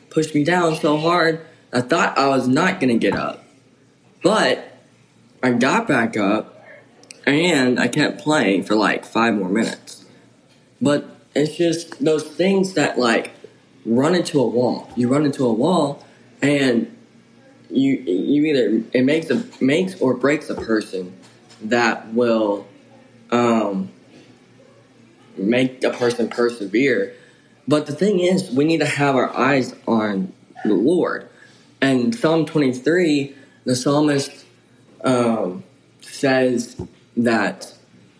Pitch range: 120-150 Hz